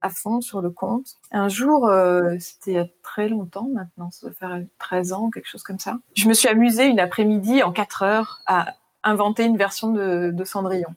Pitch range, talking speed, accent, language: 190-235 Hz, 220 wpm, French, French